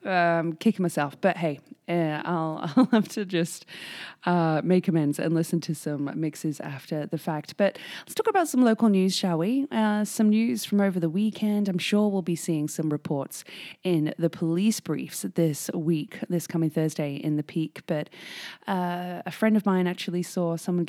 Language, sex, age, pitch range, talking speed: English, female, 20-39, 155-200 Hz, 185 wpm